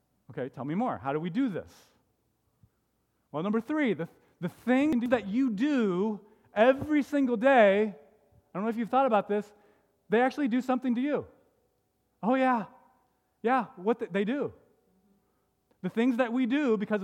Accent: American